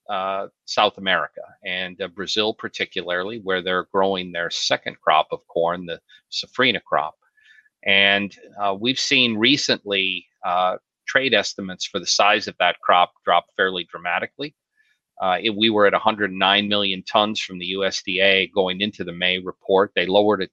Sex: male